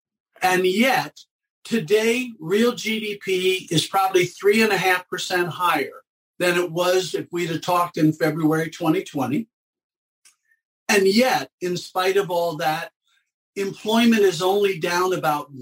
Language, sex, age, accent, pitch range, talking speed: English, male, 50-69, American, 180-240 Hz, 140 wpm